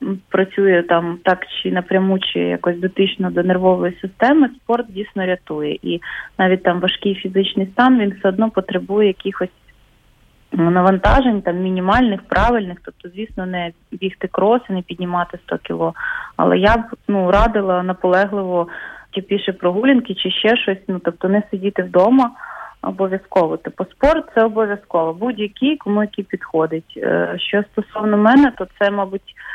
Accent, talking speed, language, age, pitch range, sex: native, 145 wpm, Ukrainian, 20-39, 185-215 Hz, female